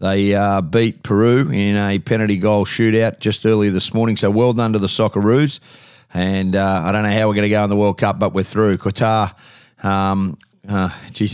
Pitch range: 100-115 Hz